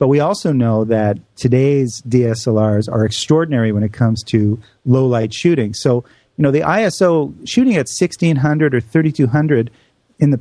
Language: English